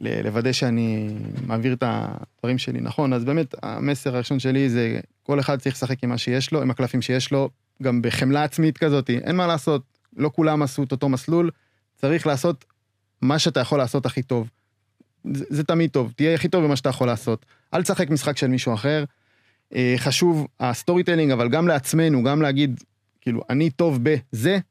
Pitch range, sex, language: 115-150 Hz, male, Hebrew